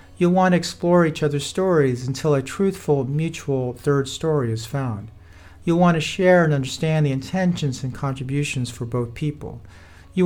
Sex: male